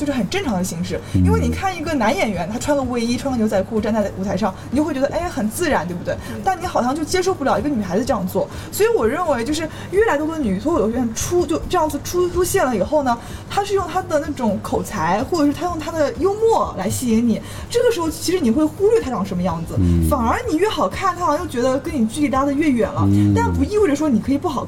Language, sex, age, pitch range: Chinese, female, 20-39, 200-310 Hz